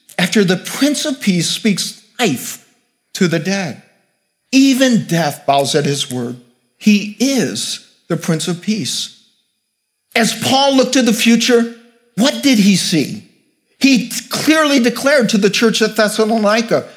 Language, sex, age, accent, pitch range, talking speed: English, male, 50-69, American, 185-240 Hz, 140 wpm